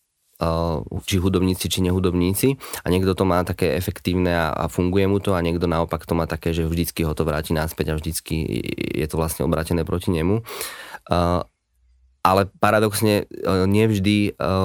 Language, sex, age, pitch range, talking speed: Slovak, male, 20-39, 85-100 Hz, 150 wpm